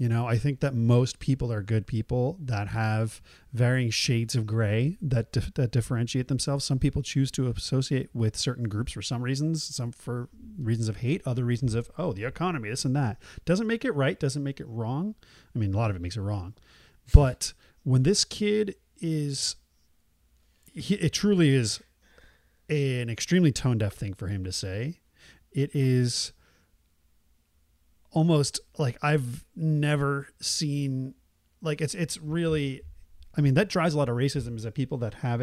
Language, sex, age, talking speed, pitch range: English, male, 30-49, 175 wpm, 110-145 Hz